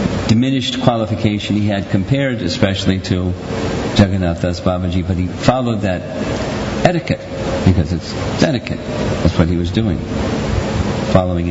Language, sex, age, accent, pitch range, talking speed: English, male, 50-69, American, 90-115 Hz, 125 wpm